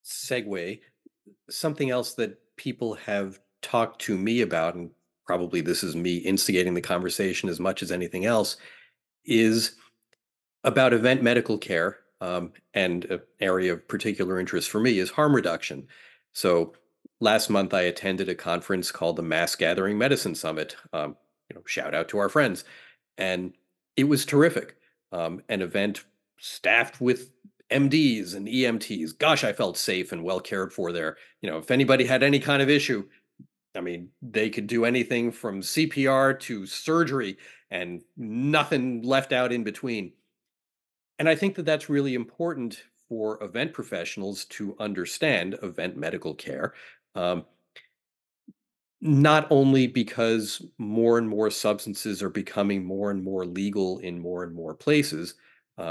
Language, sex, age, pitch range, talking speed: English, male, 40-59, 90-130 Hz, 150 wpm